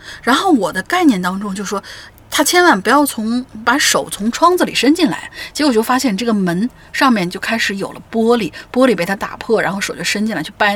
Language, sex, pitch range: Chinese, female, 185-250 Hz